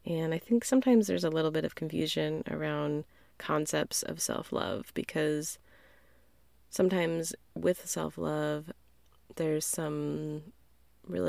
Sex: female